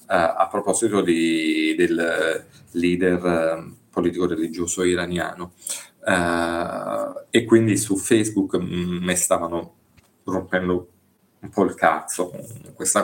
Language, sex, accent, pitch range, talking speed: Italian, male, native, 90-105 Hz, 105 wpm